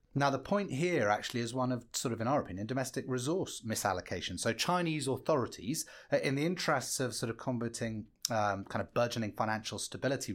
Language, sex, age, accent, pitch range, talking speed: English, male, 30-49, British, 115-155 Hz, 185 wpm